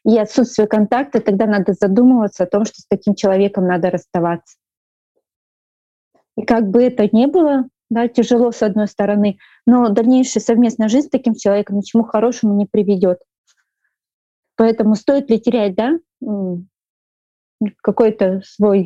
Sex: female